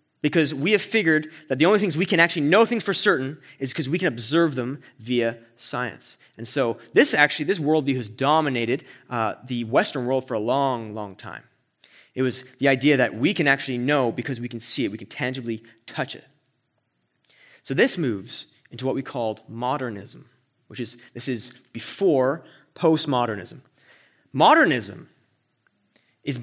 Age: 30-49